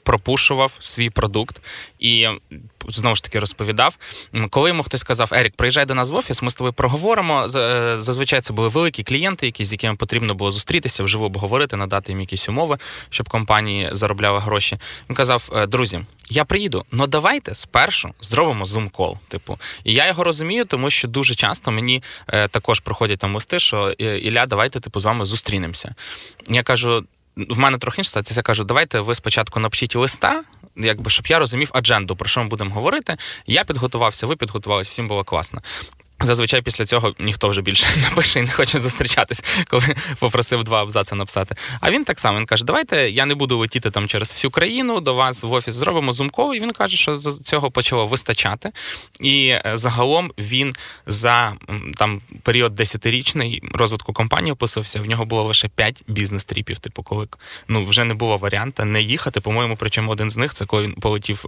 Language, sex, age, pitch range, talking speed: Ukrainian, male, 20-39, 105-130 Hz, 180 wpm